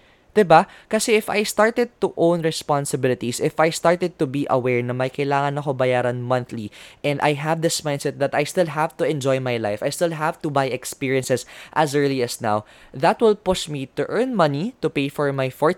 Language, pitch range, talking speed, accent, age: Filipino, 130-170 Hz, 210 wpm, native, 20-39